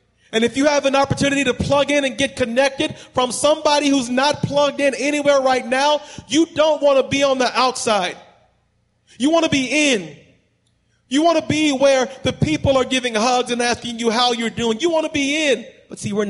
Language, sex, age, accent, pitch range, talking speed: English, male, 40-59, American, 185-245 Hz, 215 wpm